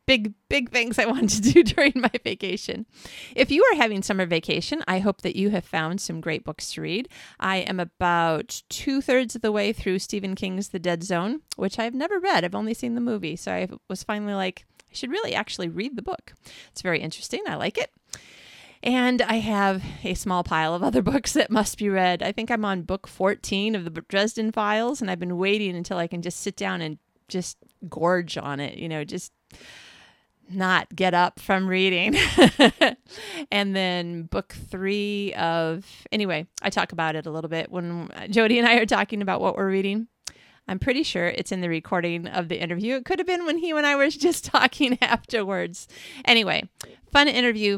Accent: American